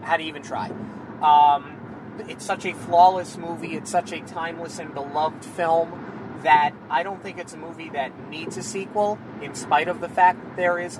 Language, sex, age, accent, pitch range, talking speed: English, male, 30-49, American, 145-190 Hz, 195 wpm